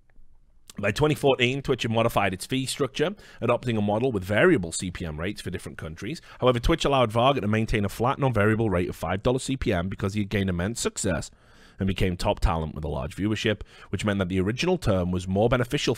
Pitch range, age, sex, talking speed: 90-120 Hz, 30-49, male, 205 wpm